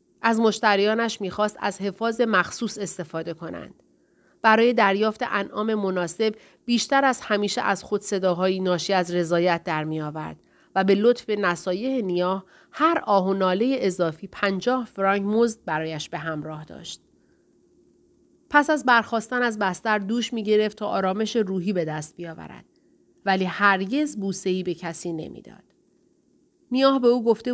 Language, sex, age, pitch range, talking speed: Persian, female, 30-49, 185-230 Hz, 135 wpm